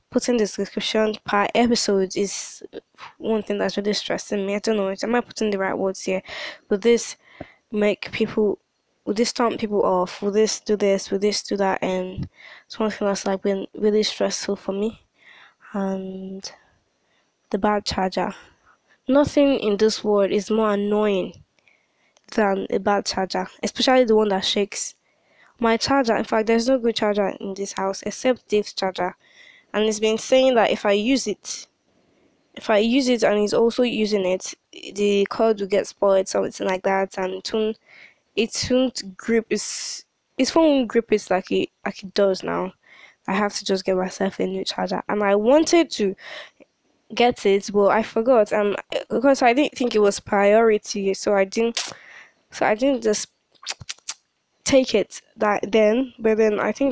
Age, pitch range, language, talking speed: 10-29, 200-230 Hz, English, 175 wpm